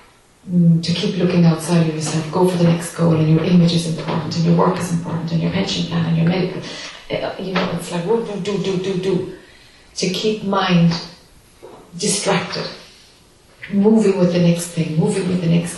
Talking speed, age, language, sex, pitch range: 195 wpm, 30-49, English, female, 170-200 Hz